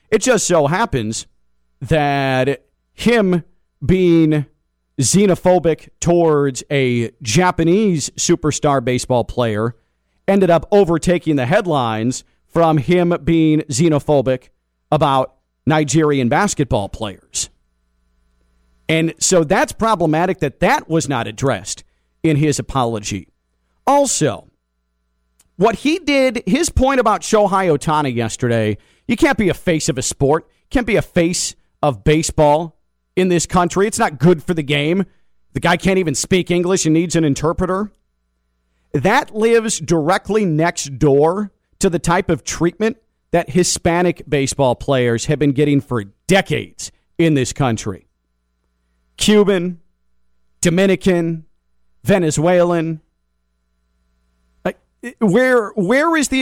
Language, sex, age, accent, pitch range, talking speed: English, male, 40-59, American, 110-180 Hz, 120 wpm